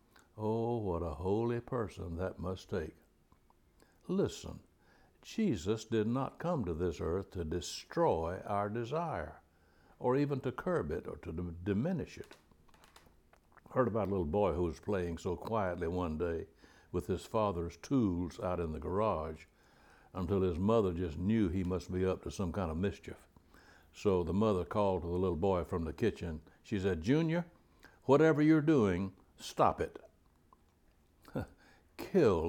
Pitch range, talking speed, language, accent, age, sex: 85-105 Hz, 155 wpm, English, American, 60-79, male